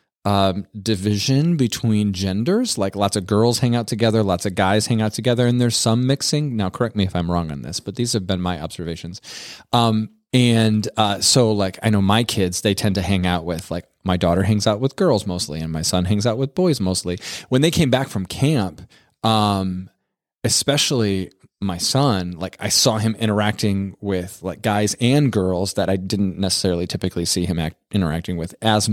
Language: English